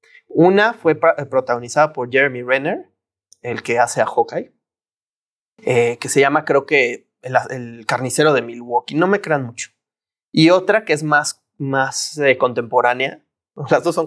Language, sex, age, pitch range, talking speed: Spanish, male, 30-49, 130-185 Hz, 160 wpm